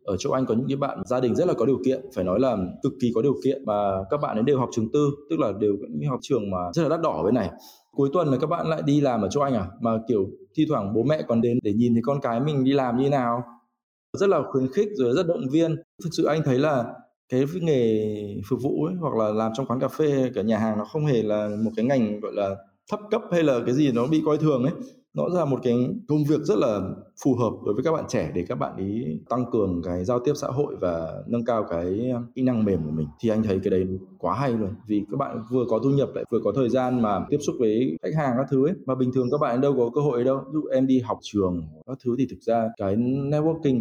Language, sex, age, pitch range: Vietnamese, male, 20-39, 110-145 Hz